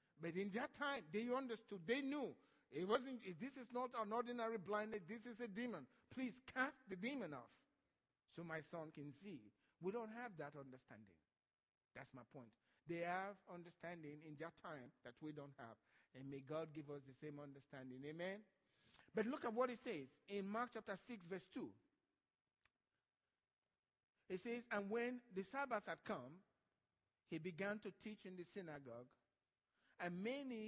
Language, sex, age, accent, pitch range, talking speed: English, male, 50-69, Nigerian, 165-250 Hz, 170 wpm